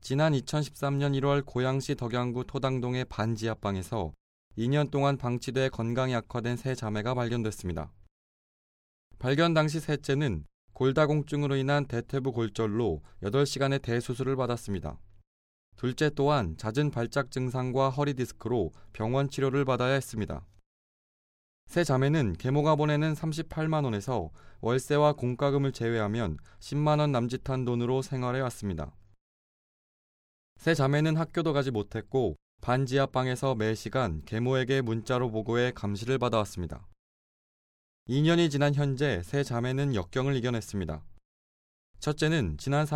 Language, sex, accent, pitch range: Korean, male, native, 105-140 Hz